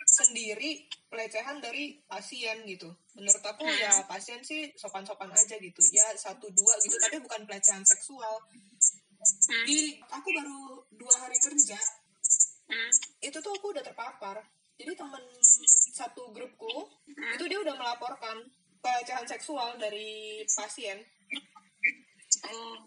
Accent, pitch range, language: native, 220-305 Hz, Indonesian